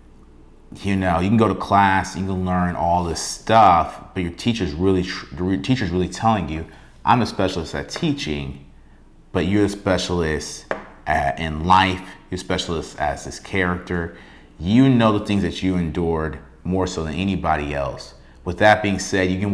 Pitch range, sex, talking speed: 70-90 Hz, male, 185 wpm